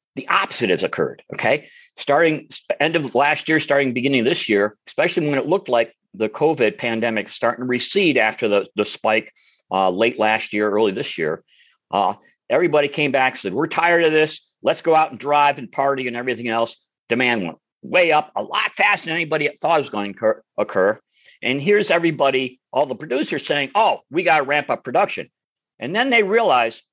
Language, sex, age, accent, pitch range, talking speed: English, male, 50-69, American, 140-205 Hz, 195 wpm